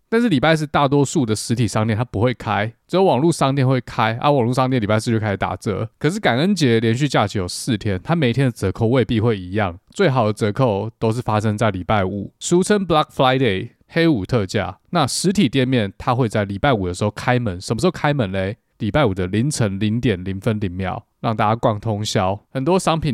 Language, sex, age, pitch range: Chinese, male, 20-39, 105-135 Hz